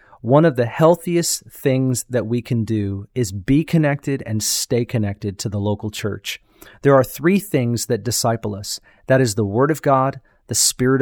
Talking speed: 185 wpm